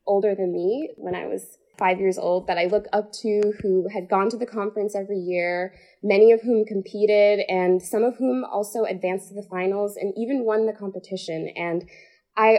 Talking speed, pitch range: 200 wpm, 180-220 Hz